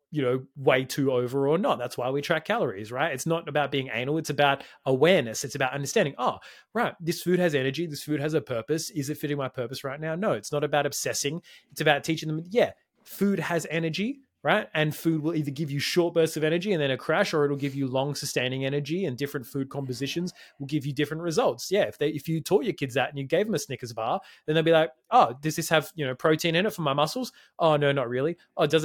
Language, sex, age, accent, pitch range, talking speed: English, male, 20-39, Australian, 135-165 Hz, 260 wpm